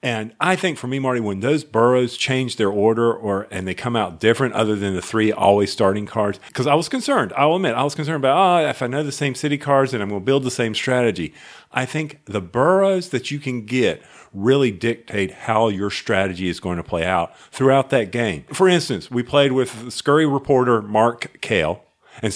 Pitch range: 110-140 Hz